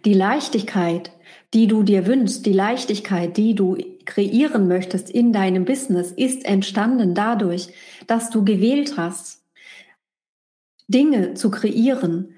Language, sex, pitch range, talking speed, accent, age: German, female, 190-240 Hz, 120 wpm, German, 30-49